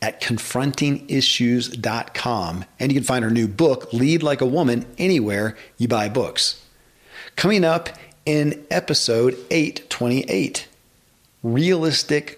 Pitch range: 115-145 Hz